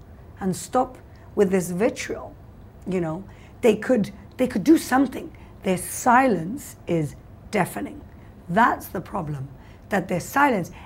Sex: female